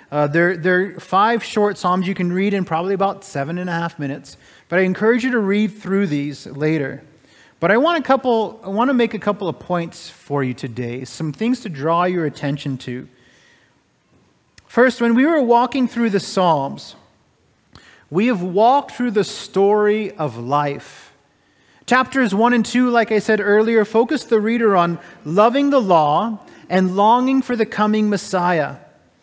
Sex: male